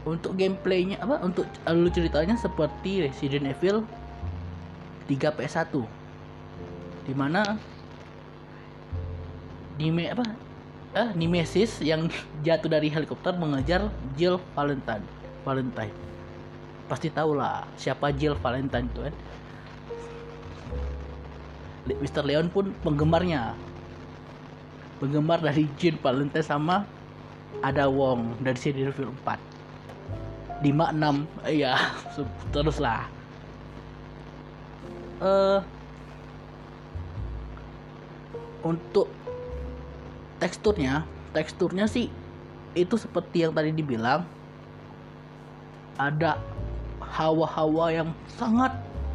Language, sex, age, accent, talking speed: Indonesian, male, 20-39, native, 80 wpm